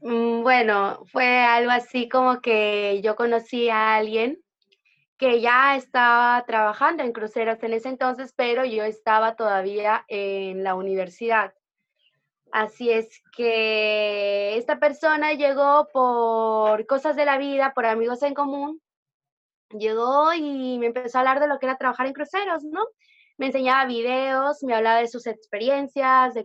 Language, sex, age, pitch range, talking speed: Spanish, female, 20-39, 215-255 Hz, 145 wpm